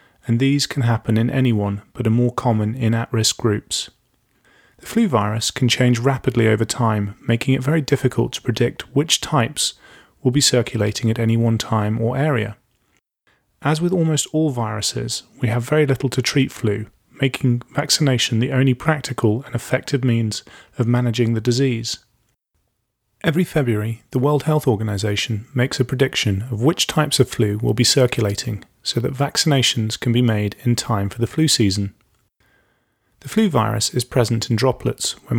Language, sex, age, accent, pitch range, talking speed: English, male, 30-49, British, 115-140 Hz, 170 wpm